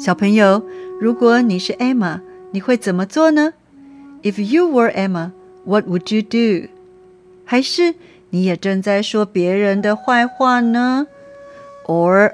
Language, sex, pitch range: Chinese, female, 185-255 Hz